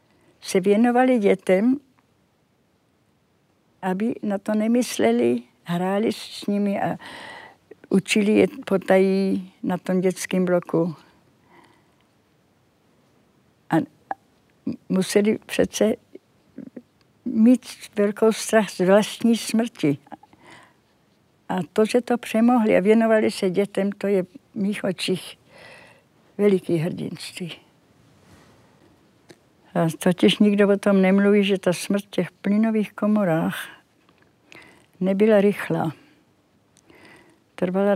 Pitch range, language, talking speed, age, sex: 180-210 Hz, Czech, 90 wpm, 60-79, female